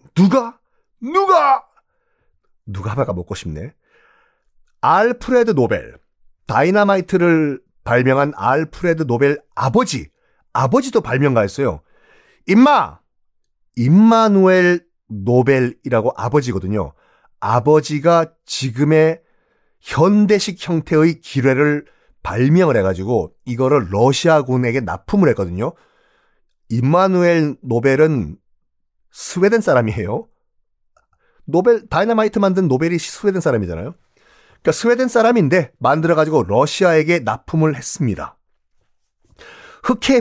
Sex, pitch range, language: male, 125-200 Hz, Korean